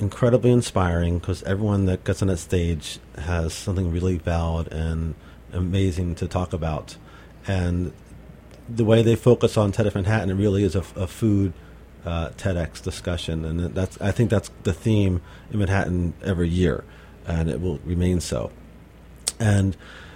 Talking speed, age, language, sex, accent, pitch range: 160 wpm, 40-59, English, male, American, 85-100 Hz